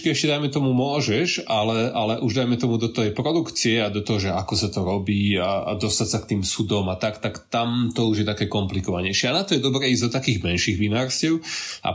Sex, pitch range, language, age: male, 105-120 Hz, Slovak, 20-39